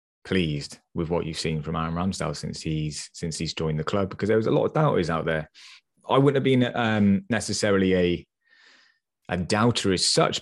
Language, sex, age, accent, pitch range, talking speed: English, male, 20-39, British, 80-105 Hz, 200 wpm